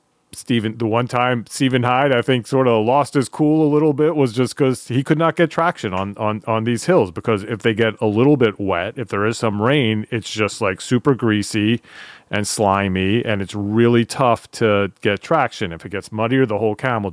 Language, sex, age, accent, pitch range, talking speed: English, male, 40-59, American, 105-135 Hz, 220 wpm